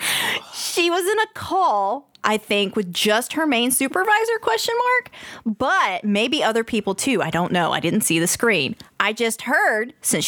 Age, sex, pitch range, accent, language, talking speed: 20-39, female, 190-295 Hz, American, English, 180 wpm